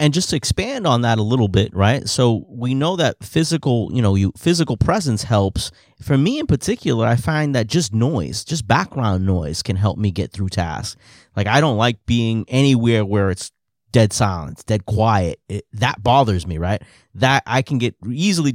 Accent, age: American, 30-49